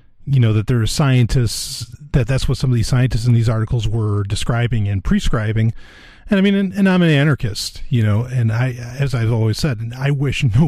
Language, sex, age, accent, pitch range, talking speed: English, male, 40-59, American, 115-165 Hz, 220 wpm